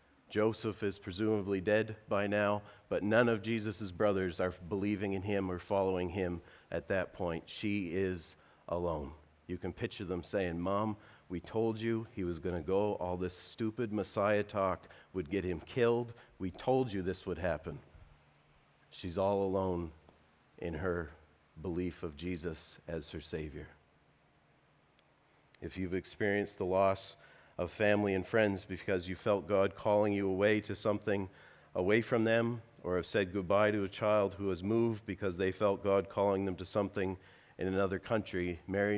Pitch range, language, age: 85-100 Hz, English, 40-59